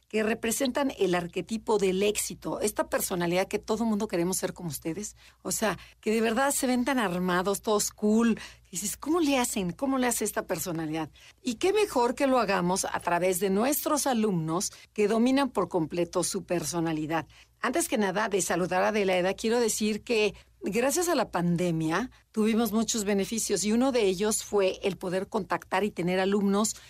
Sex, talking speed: female, 180 wpm